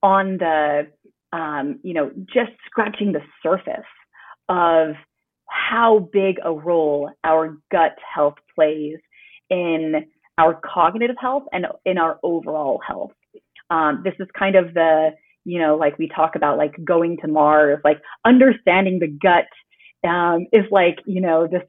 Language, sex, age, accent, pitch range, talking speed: English, female, 30-49, American, 160-215 Hz, 145 wpm